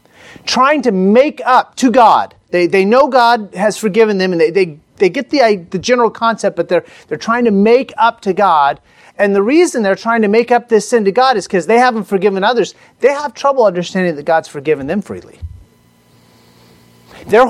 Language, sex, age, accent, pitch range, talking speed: English, male, 40-59, American, 180-250 Hz, 200 wpm